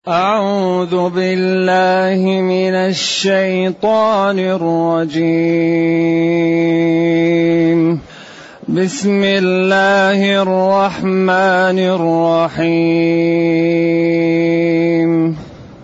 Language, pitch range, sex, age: Arabic, 170-205 Hz, male, 30-49